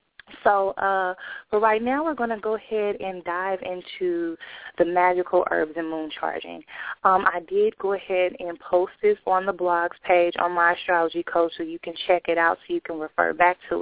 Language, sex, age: English, female, 20-39